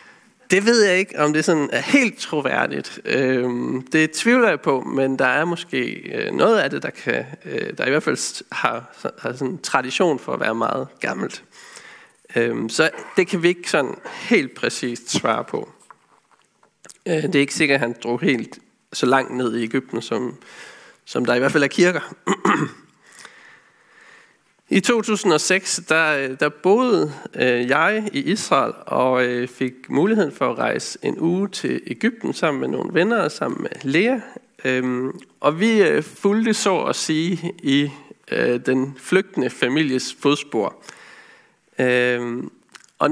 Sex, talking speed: male, 155 wpm